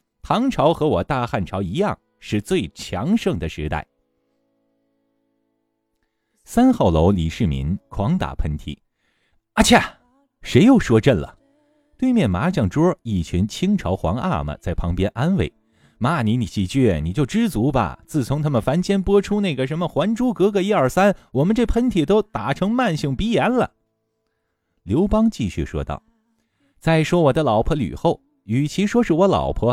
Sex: male